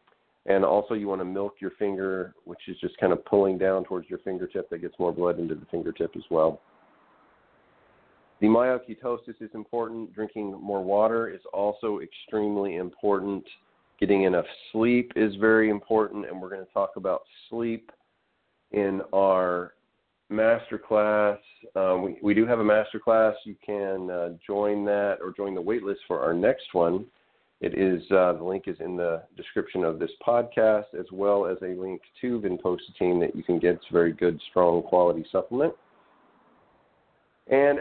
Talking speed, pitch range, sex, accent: 170 wpm, 95-115 Hz, male, American